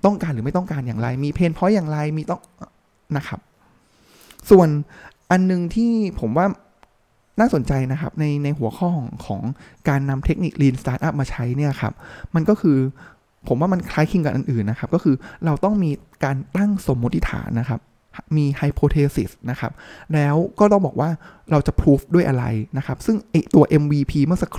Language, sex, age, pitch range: Thai, male, 20-39, 130-170 Hz